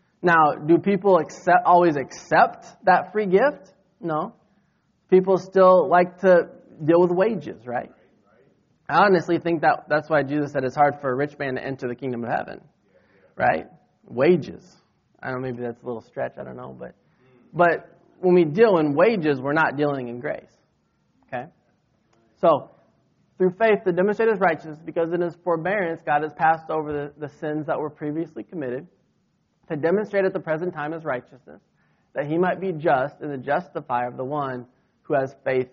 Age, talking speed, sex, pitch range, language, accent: 20-39, 180 wpm, male, 135-175 Hz, English, American